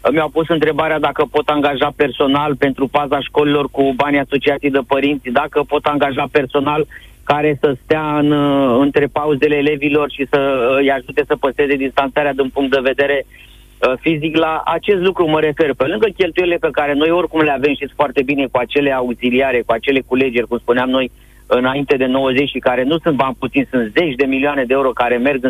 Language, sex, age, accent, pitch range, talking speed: Romanian, male, 30-49, native, 135-155 Hz, 195 wpm